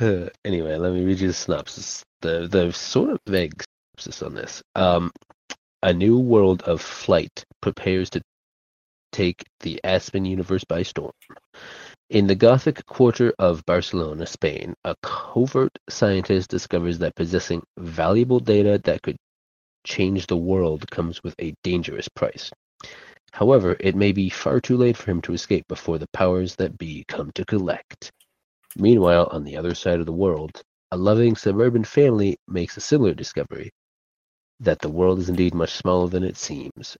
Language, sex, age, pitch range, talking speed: English, male, 30-49, 85-105 Hz, 160 wpm